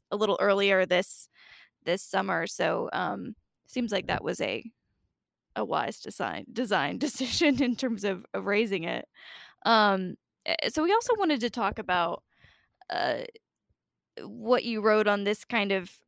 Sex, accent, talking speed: female, American, 150 wpm